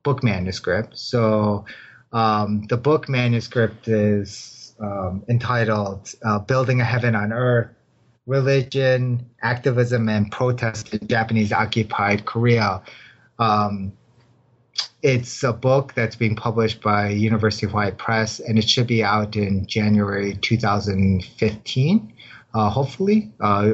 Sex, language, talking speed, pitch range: male, English, 115 wpm, 100-120 Hz